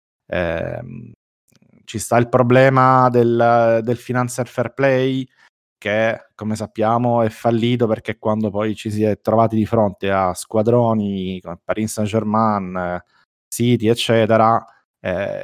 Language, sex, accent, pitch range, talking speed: Italian, male, native, 105-125 Hz, 130 wpm